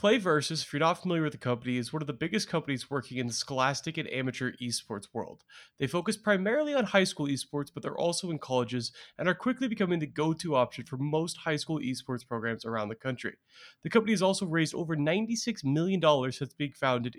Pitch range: 130-175 Hz